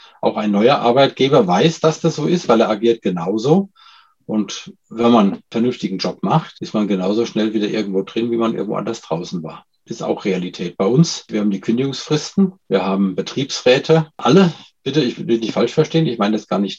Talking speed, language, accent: 205 wpm, German, German